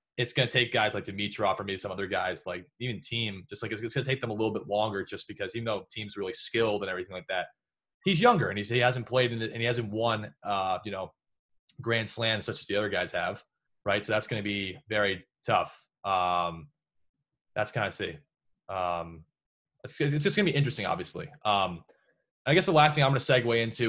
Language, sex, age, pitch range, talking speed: English, male, 20-39, 105-130 Hz, 230 wpm